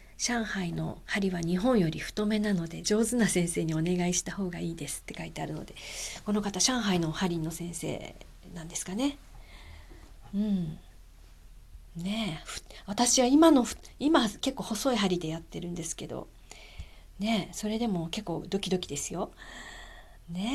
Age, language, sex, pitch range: 40-59, Japanese, female, 165-220 Hz